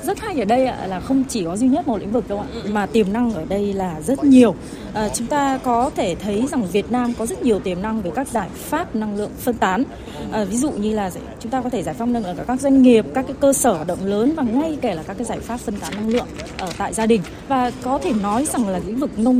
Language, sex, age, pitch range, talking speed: Vietnamese, female, 20-39, 210-260 Hz, 295 wpm